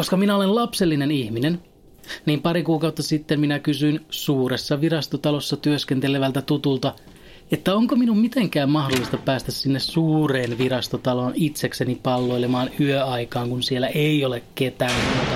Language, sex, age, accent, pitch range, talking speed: Finnish, male, 30-49, native, 130-170 Hz, 125 wpm